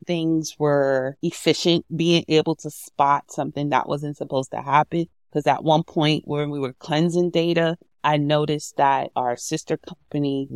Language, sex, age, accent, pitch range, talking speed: English, female, 30-49, American, 135-160 Hz, 160 wpm